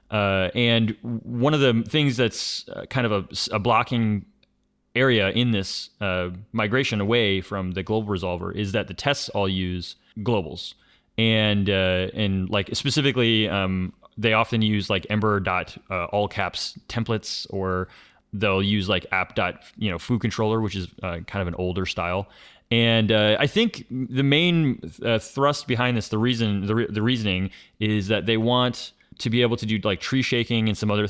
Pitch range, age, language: 100-115 Hz, 30-49, English